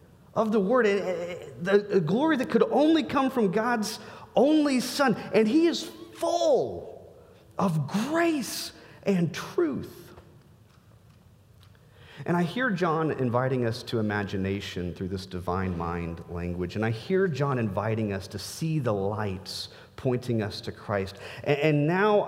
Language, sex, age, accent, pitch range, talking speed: English, male, 40-59, American, 100-145 Hz, 135 wpm